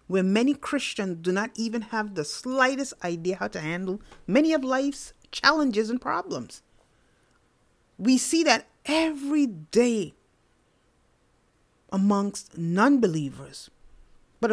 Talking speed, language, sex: 110 wpm, English, female